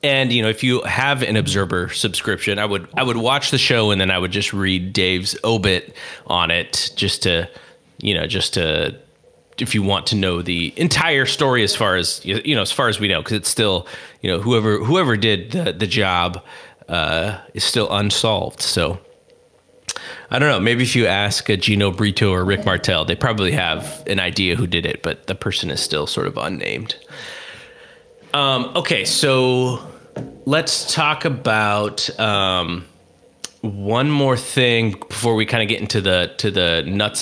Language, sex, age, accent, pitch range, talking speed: English, male, 30-49, American, 95-130 Hz, 185 wpm